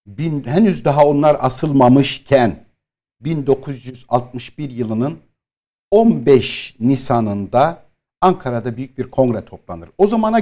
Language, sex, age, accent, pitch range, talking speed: Turkish, male, 60-79, native, 115-160 Hz, 90 wpm